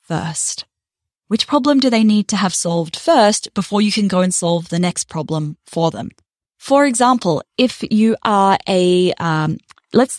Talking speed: 170 wpm